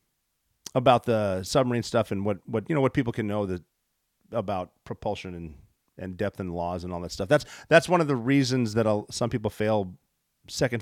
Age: 40-59